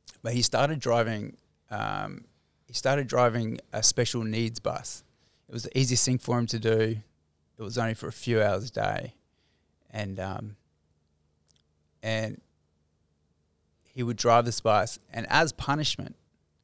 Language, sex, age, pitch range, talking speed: English, male, 20-39, 75-120 Hz, 150 wpm